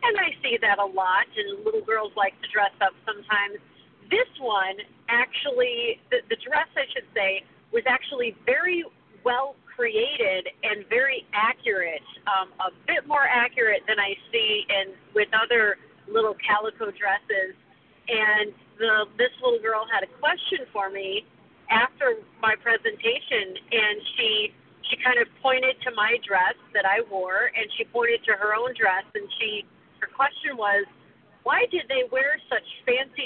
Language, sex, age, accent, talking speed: English, female, 40-59, American, 155 wpm